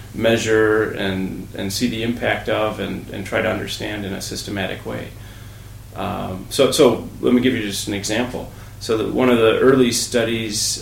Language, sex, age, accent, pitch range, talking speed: English, male, 30-49, American, 105-125 Hz, 175 wpm